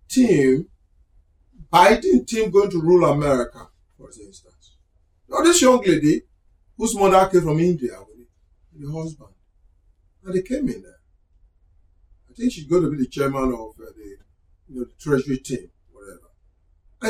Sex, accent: male, Nigerian